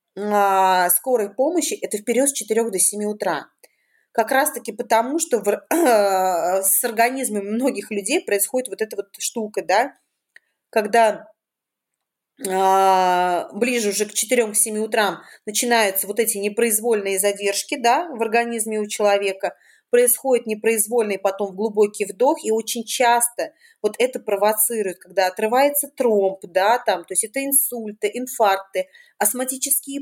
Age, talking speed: 30-49, 130 wpm